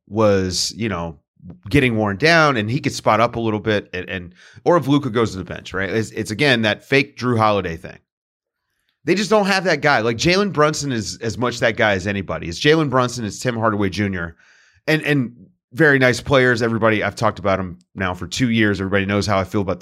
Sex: male